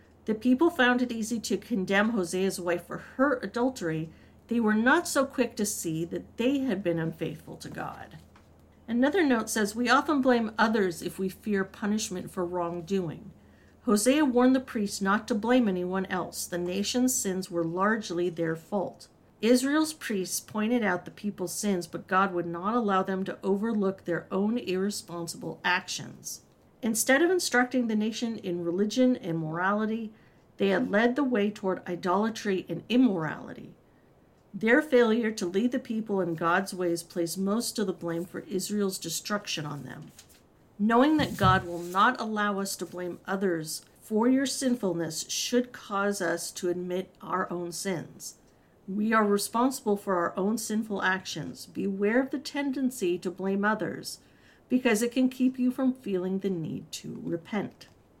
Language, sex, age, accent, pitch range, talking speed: English, female, 50-69, American, 180-235 Hz, 165 wpm